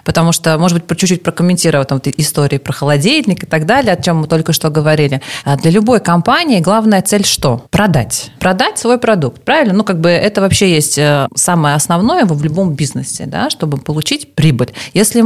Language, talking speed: Russian, 180 wpm